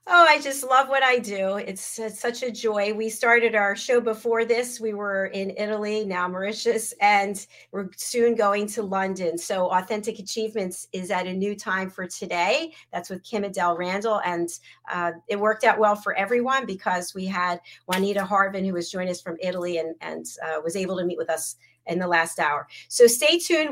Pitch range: 185-235 Hz